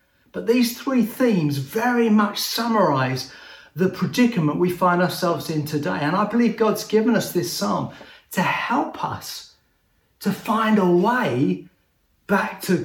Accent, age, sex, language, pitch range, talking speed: British, 40-59, male, English, 160-215 Hz, 145 wpm